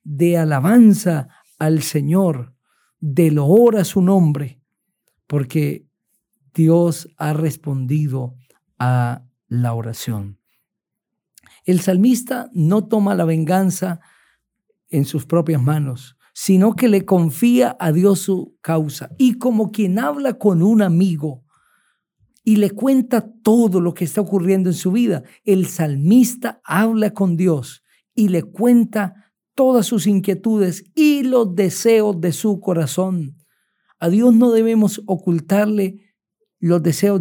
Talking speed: 125 wpm